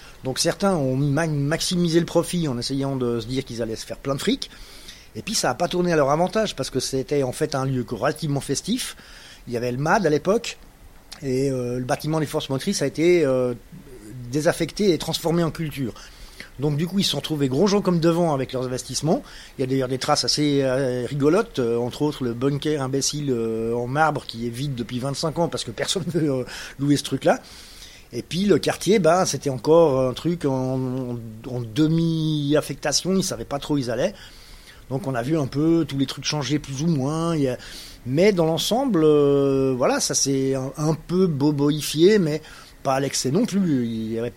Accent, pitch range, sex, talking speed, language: French, 125-160 Hz, male, 210 wpm, French